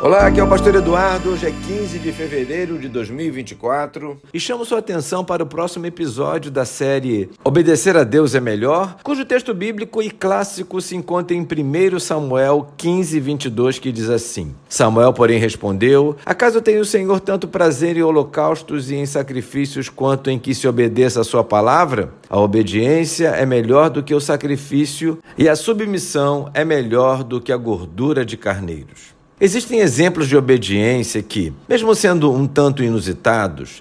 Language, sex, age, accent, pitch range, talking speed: Portuguese, male, 50-69, Brazilian, 135-190 Hz, 165 wpm